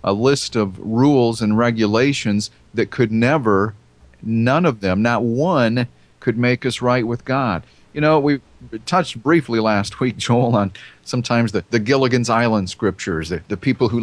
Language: English